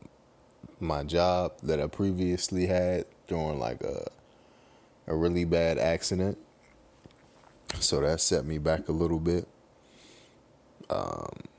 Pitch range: 80-90 Hz